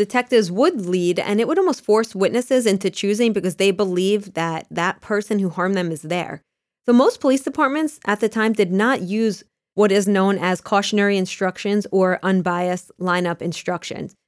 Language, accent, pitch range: English, American, 180-220 Hz